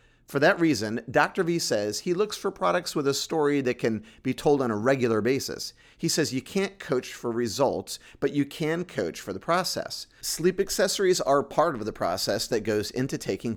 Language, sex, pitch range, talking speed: English, male, 115-155 Hz, 205 wpm